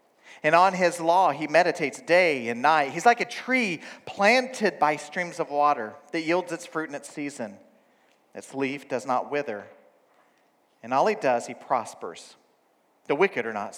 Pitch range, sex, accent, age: 145-225 Hz, male, American, 40-59